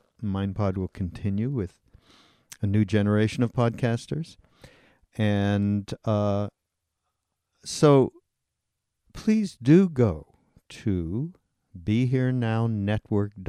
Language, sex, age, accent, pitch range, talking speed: English, male, 50-69, American, 100-125 Hz, 70 wpm